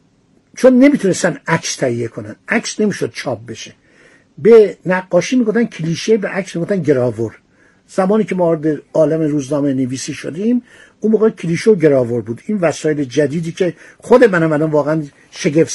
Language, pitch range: Persian, 155-220 Hz